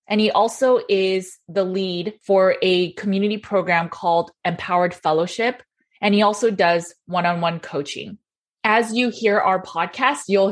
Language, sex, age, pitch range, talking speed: English, female, 20-39, 180-215 Hz, 145 wpm